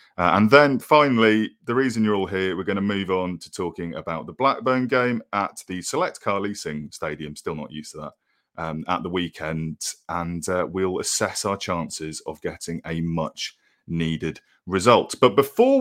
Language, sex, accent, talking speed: English, male, British, 180 wpm